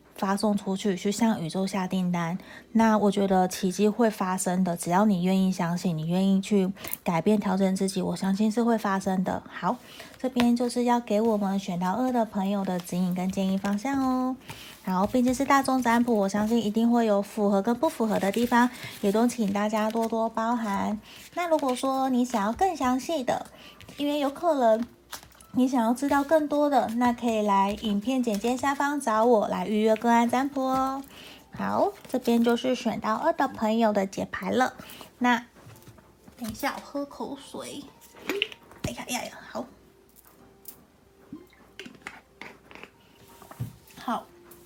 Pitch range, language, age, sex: 200-260 Hz, Chinese, 20-39, female